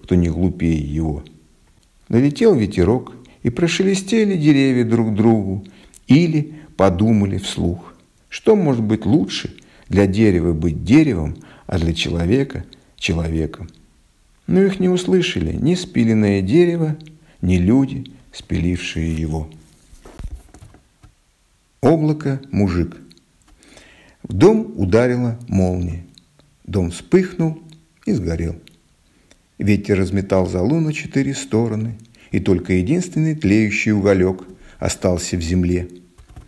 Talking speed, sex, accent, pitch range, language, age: 100 wpm, male, native, 85-140 Hz, Russian, 50-69